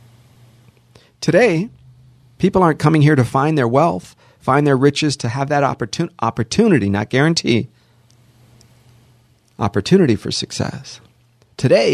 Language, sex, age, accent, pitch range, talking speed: English, male, 40-59, American, 120-155 Hz, 115 wpm